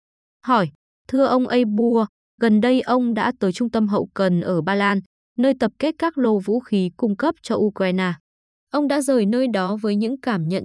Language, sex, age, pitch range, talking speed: Vietnamese, female, 20-39, 195-250 Hz, 205 wpm